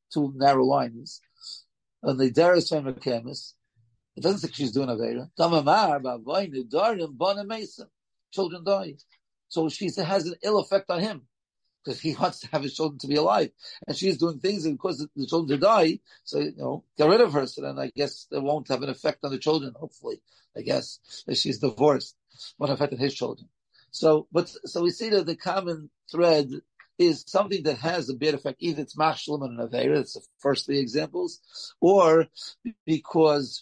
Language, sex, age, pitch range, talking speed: English, male, 50-69, 135-175 Hz, 185 wpm